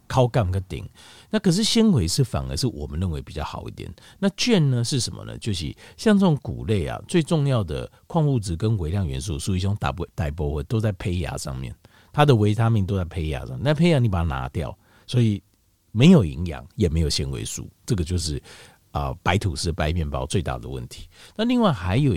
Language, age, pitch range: Chinese, 50-69, 85-125 Hz